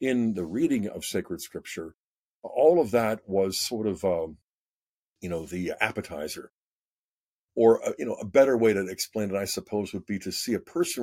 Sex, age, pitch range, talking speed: male, 50-69, 95-115 Hz, 190 wpm